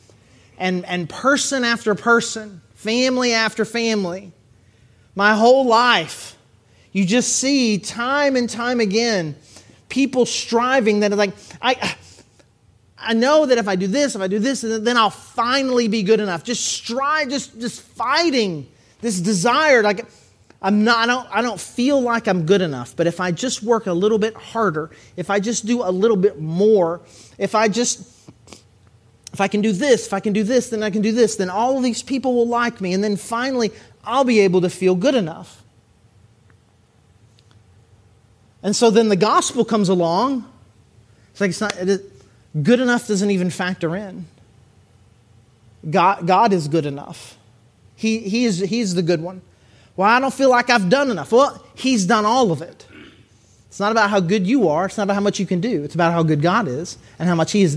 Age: 30-49